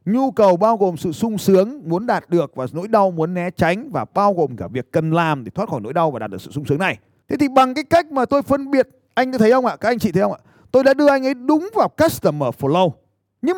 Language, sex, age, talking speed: Vietnamese, male, 30-49, 285 wpm